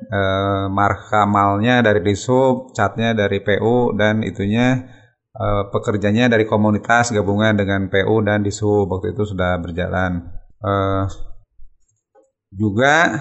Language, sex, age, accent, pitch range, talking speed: Indonesian, male, 30-49, native, 100-120 Hz, 110 wpm